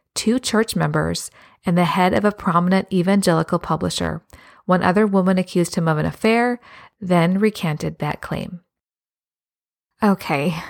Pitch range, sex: 160-195 Hz, female